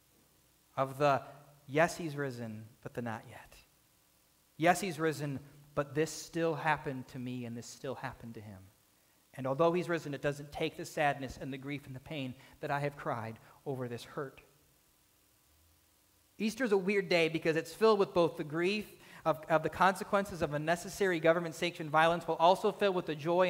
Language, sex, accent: English, male, American